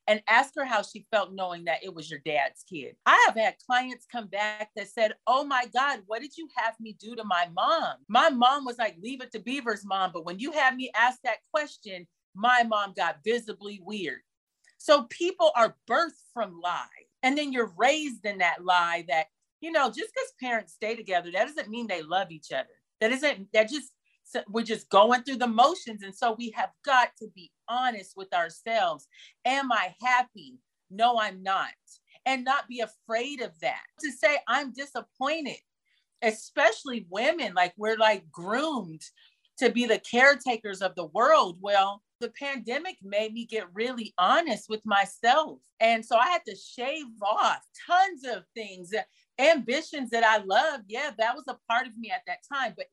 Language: English